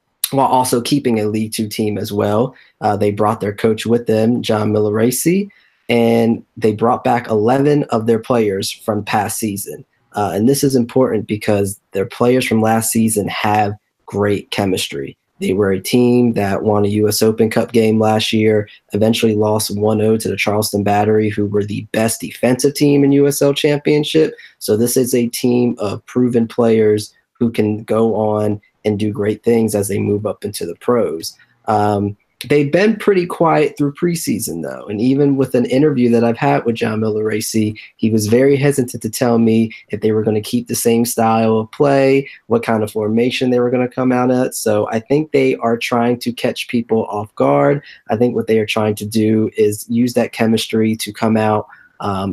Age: 20-39